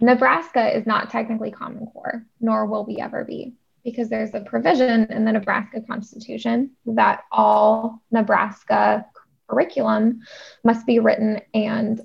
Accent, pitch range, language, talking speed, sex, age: American, 215-260 Hz, English, 135 wpm, female, 10-29